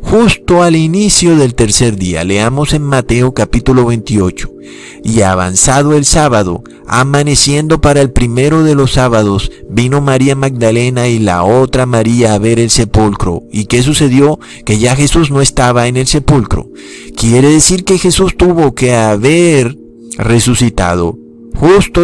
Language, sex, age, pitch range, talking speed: Spanish, male, 50-69, 110-140 Hz, 145 wpm